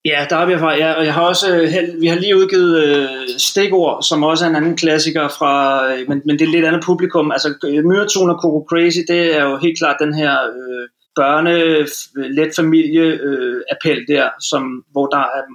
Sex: male